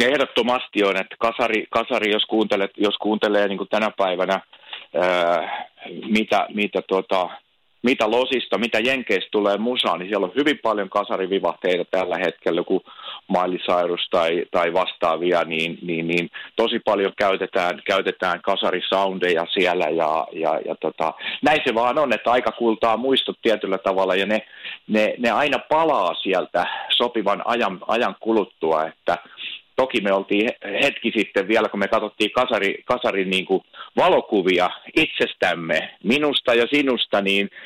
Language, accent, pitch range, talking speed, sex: Finnish, native, 95-120 Hz, 140 wpm, male